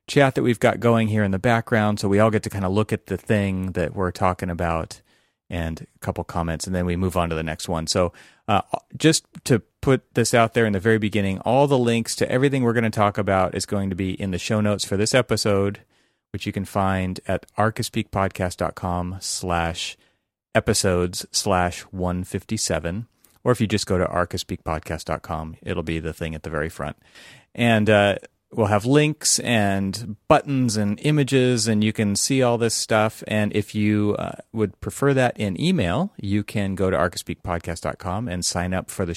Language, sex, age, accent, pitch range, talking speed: English, male, 30-49, American, 90-110 Hz, 205 wpm